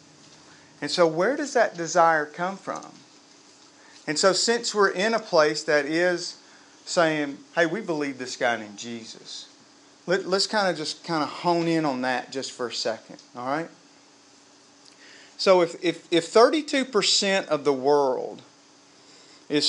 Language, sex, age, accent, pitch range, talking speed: English, male, 40-59, American, 150-195 Hz, 150 wpm